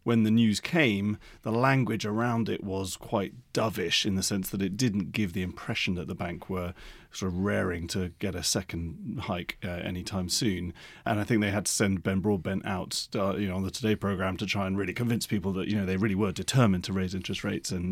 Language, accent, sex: English, British, male